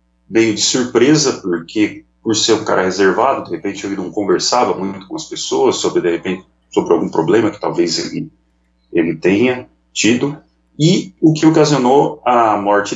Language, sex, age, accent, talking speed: Portuguese, male, 40-59, Brazilian, 155 wpm